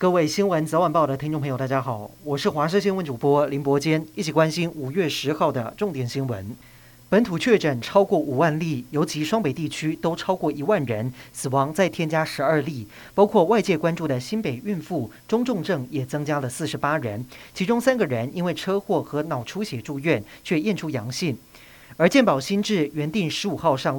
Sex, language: male, Chinese